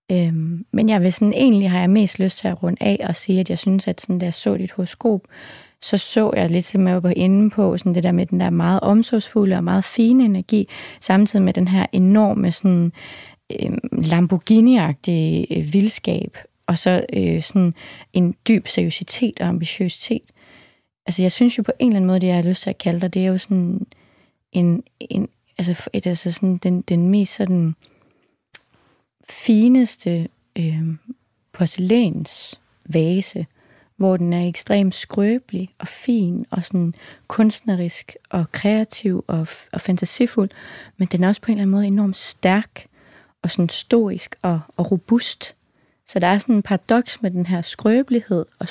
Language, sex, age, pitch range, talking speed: English, female, 20-39, 175-210 Hz, 170 wpm